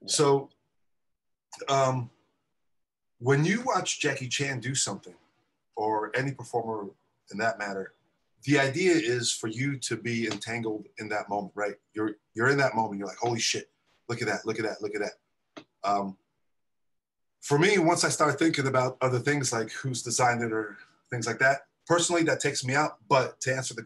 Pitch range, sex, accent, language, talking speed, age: 110-140 Hz, male, American, English, 180 wpm, 30-49